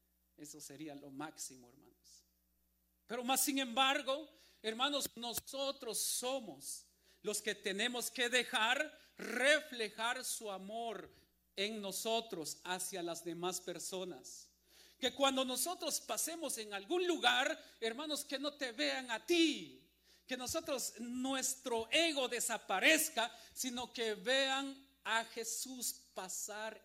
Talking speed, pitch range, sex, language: 115 wpm, 200-265 Hz, male, Spanish